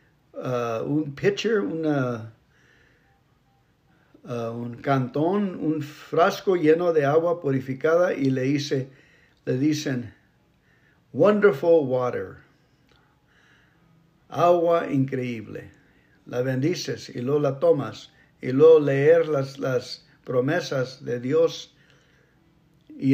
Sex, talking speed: male, 95 wpm